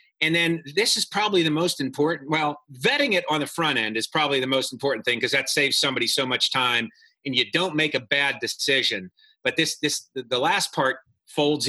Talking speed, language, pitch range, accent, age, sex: 215 wpm, English, 130-170 Hz, American, 40-59, male